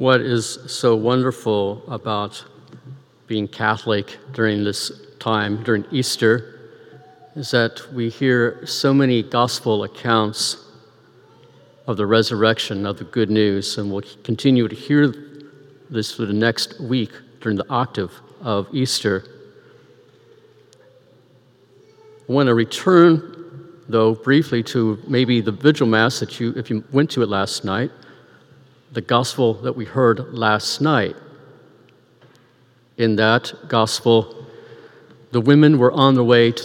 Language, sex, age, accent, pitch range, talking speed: English, male, 50-69, American, 110-135 Hz, 130 wpm